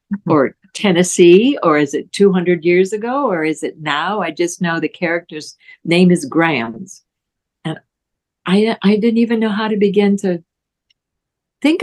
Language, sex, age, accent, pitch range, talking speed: English, female, 60-79, American, 170-205 Hz, 155 wpm